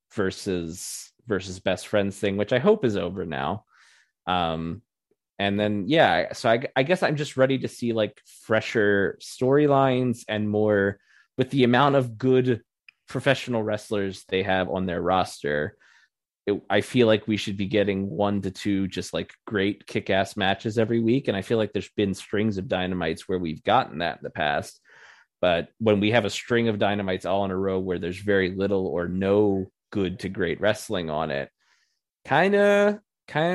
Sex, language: male, English